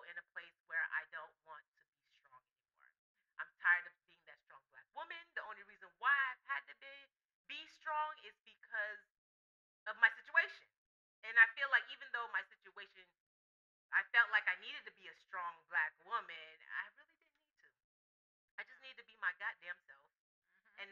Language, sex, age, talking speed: English, female, 30-49, 190 wpm